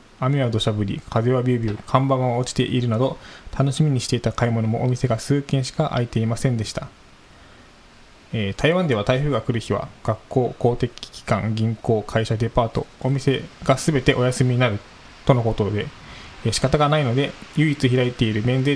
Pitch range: 115-135 Hz